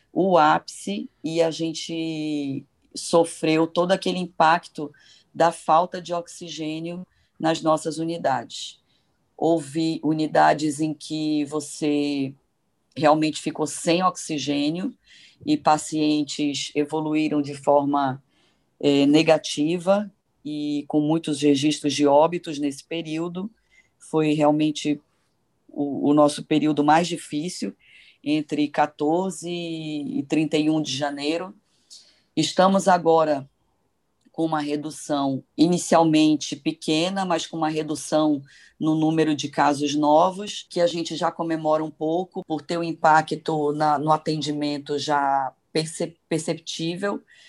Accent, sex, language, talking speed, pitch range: Brazilian, female, Portuguese, 110 wpm, 150-170 Hz